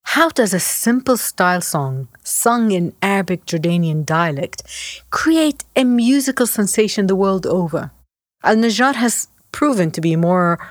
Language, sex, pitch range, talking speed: English, female, 155-195 Hz, 130 wpm